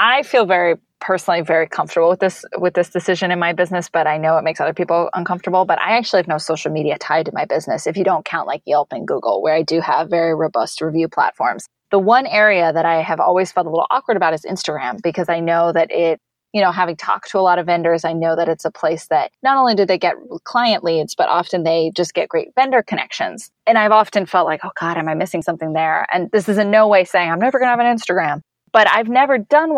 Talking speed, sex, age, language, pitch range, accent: 260 wpm, female, 20-39, English, 165-210 Hz, American